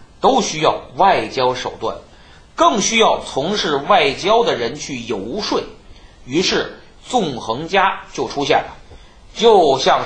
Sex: male